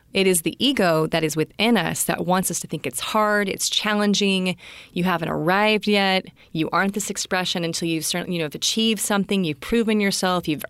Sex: female